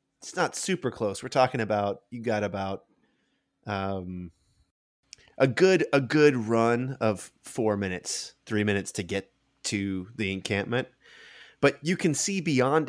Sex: male